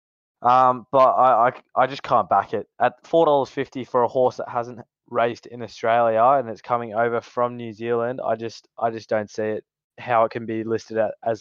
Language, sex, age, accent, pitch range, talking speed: English, male, 20-39, Australian, 110-125 Hz, 205 wpm